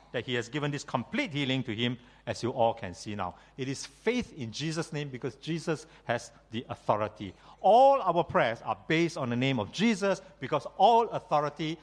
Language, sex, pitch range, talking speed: English, male, 115-165 Hz, 200 wpm